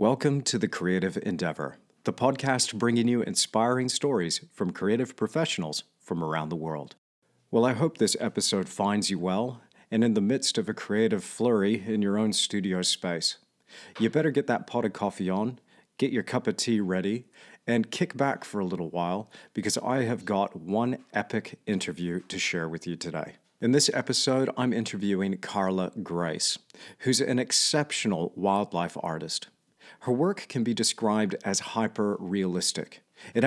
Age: 40-59